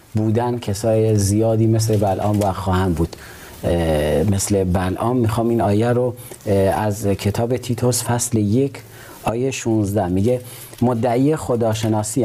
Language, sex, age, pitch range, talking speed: Persian, male, 40-59, 100-115 Hz, 120 wpm